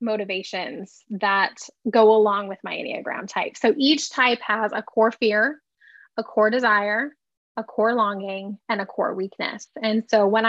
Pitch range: 215-255 Hz